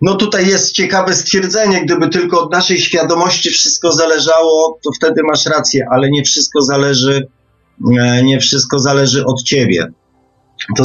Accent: native